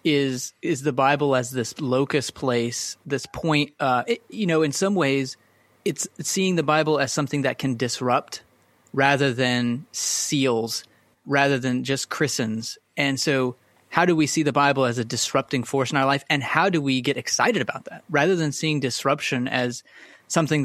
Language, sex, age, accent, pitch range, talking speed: English, male, 30-49, American, 125-145 Hz, 180 wpm